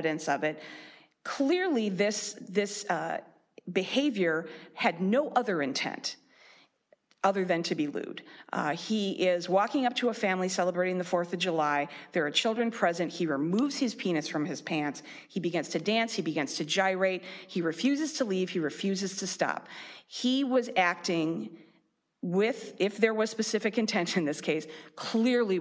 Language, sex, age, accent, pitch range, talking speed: English, female, 40-59, American, 165-210 Hz, 165 wpm